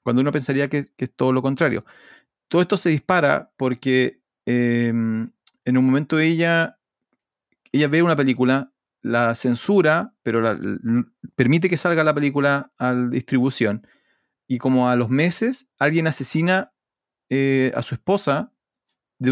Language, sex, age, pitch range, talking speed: Spanish, male, 40-59, 125-170 Hz, 150 wpm